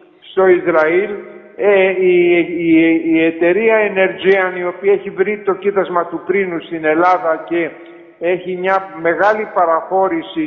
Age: 50-69